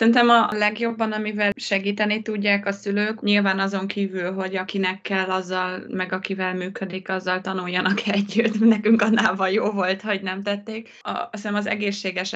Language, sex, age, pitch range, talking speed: Hungarian, female, 20-39, 185-220 Hz, 155 wpm